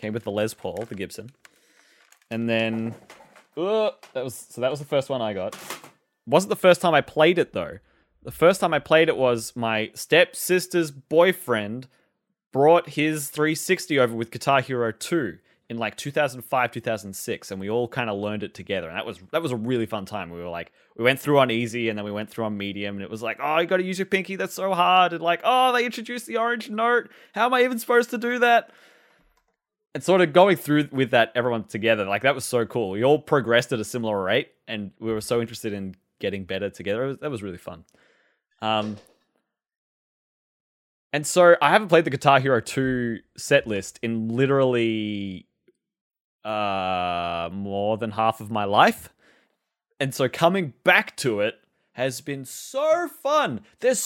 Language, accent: English, Australian